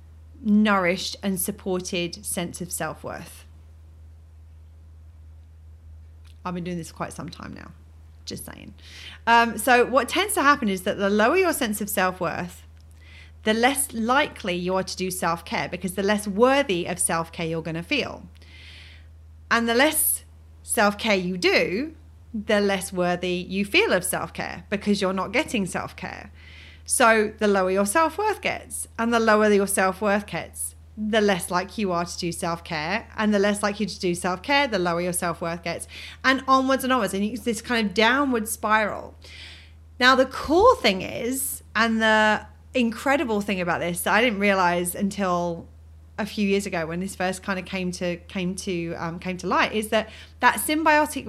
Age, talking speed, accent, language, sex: 30-49, 170 wpm, British, English, female